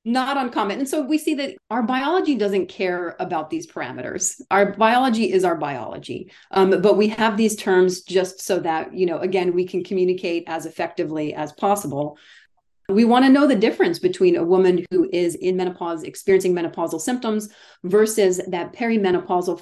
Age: 30-49